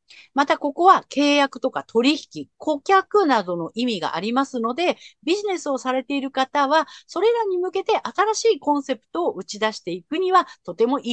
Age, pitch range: 50-69, 190-300 Hz